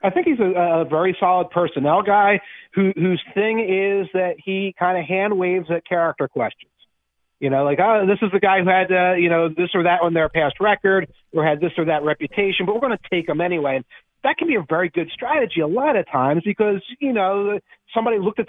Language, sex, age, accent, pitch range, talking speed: English, male, 40-59, American, 150-195 Hz, 235 wpm